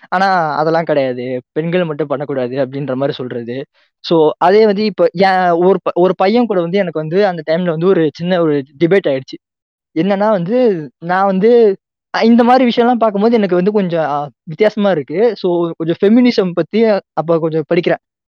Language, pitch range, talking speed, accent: Tamil, 155-195 Hz, 145 wpm, native